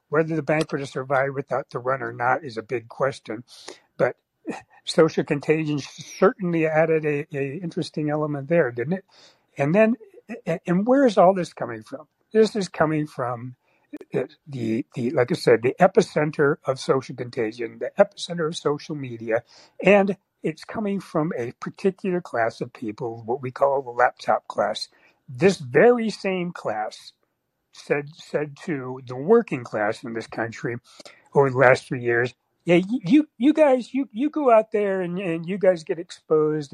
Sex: male